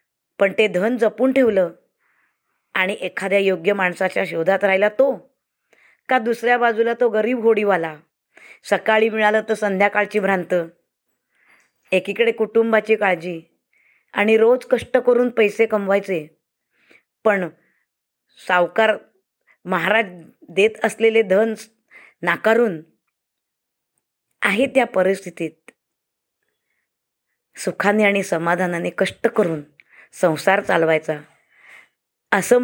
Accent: native